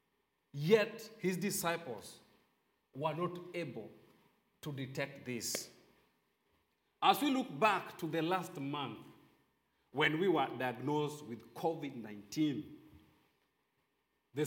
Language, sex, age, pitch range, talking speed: English, male, 40-59, 130-200 Hz, 100 wpm